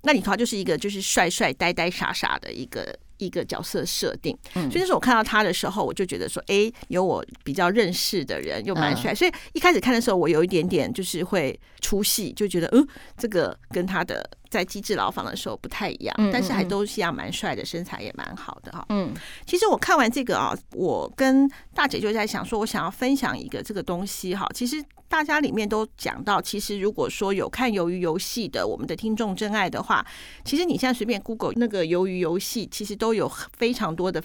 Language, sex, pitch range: Chinese, female, 195-260 Hz